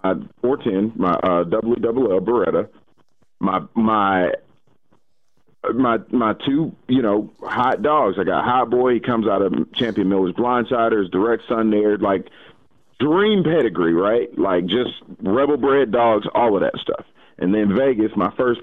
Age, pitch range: 40-59, 105-130 Hz